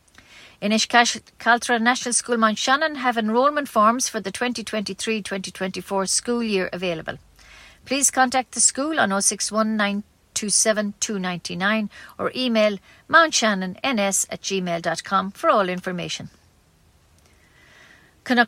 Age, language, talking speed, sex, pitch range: 50-69, English, 100 wpm, female, 195-245 Hz